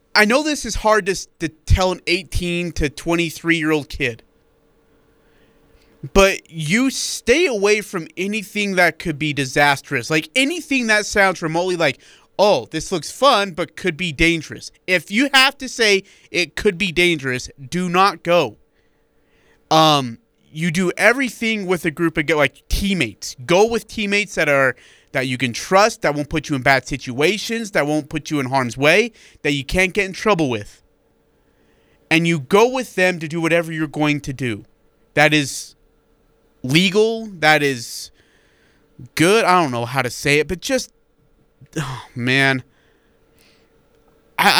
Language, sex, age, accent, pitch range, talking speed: English, male, 30-49, American, 145-200 Hz, 160 wpm